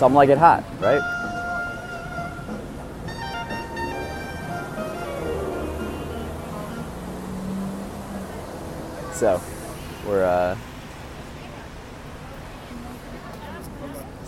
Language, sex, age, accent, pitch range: English, male, 20-39, American, 95-140 Hz